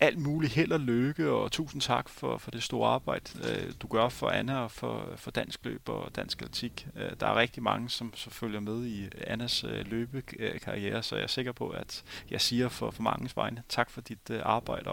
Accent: native